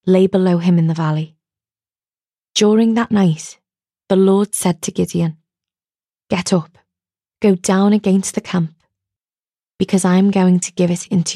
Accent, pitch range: British, 160-195 Hz